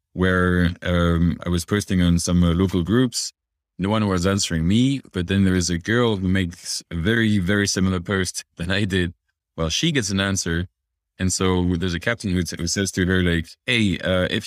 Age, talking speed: 20-39, 210 wpm